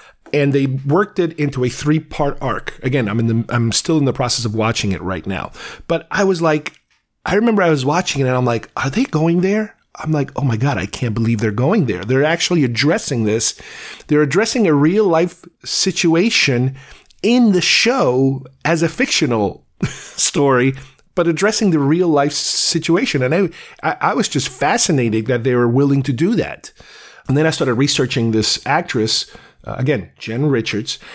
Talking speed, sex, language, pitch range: 185 wpm, male, English, 120-160 Hz